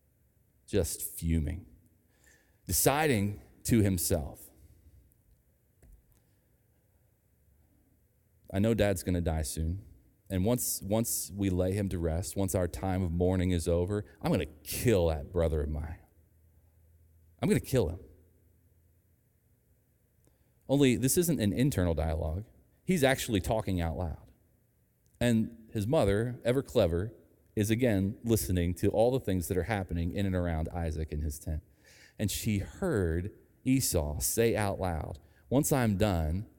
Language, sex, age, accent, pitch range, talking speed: English, male, 30-49, American, 85-105 Hz, 135 wpm